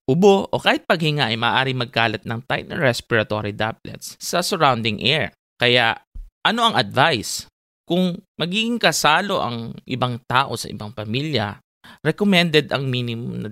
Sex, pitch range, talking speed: male, 110-155 Hz, 140 wpm